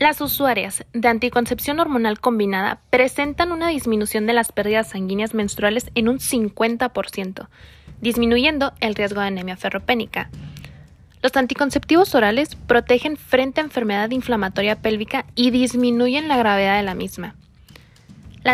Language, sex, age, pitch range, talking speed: Spanish, female, 20-39, 215-265 Hz, 130 wpm